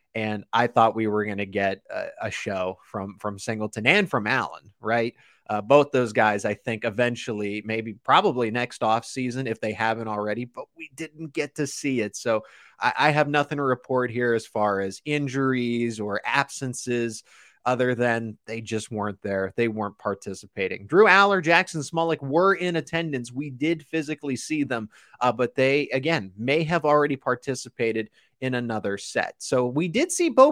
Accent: American